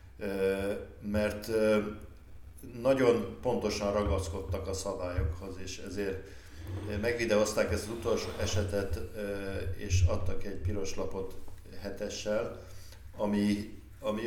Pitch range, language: 90-105 Hz, Hungarian